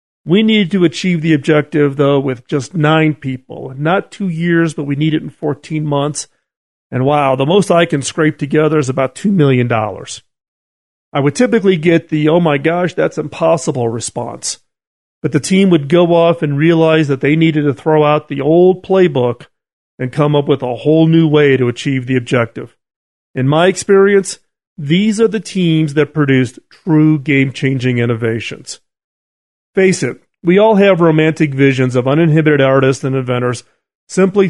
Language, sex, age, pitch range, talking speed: English, male, 40-59, 135-175 Hz, 170 wpm